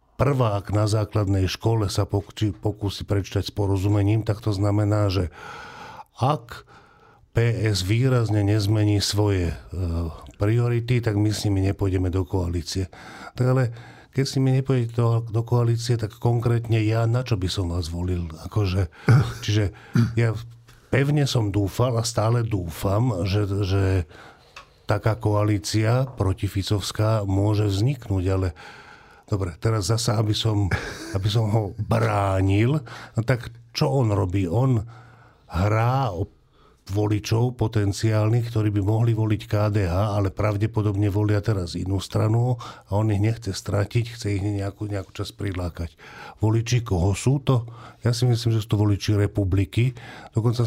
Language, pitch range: Slovak, 100-115 Hz